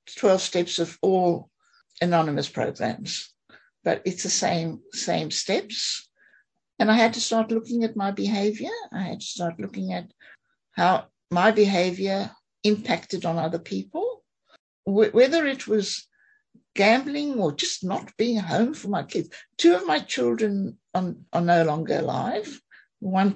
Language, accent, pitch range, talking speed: English, British, 175-230 Hz, 145 wpm